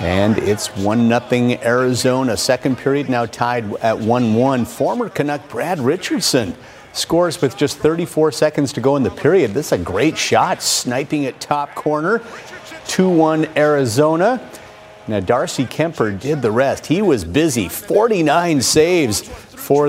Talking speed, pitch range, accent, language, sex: 150 wpm, 120-150 Hz, American, English, male